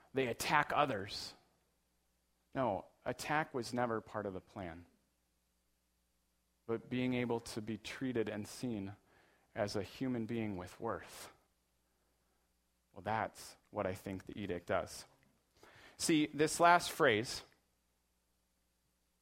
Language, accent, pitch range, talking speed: English, American, 105-155 Hz, 115 wpm